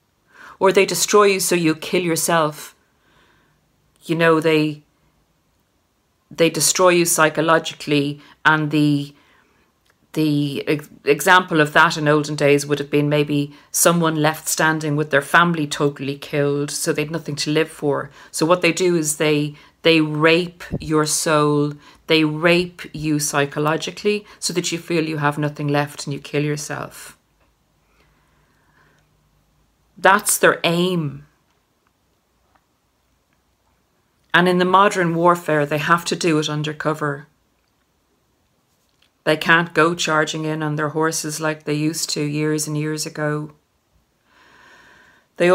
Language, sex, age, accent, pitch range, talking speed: English, female, 40-59, Irish, 145-165 Hz, 130 wpm